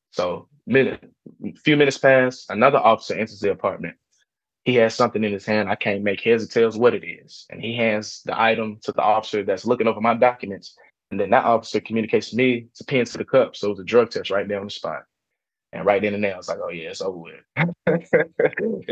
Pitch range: 110-135 Hz